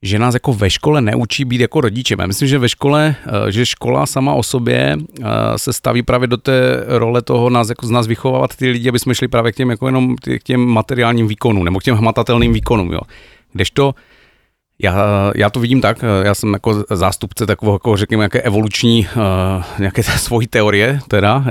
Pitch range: 105-120 Hz